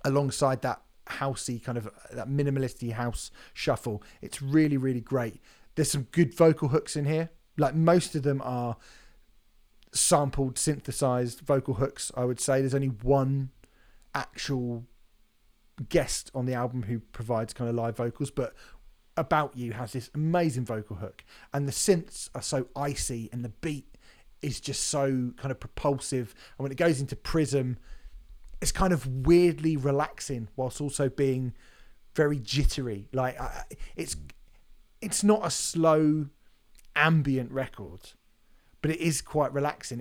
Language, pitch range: English, 120-145 Hz